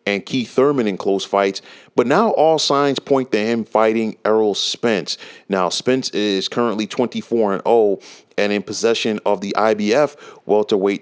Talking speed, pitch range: 150 wpm, 105-125 Hz